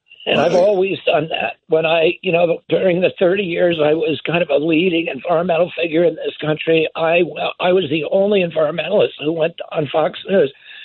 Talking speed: 200 wpm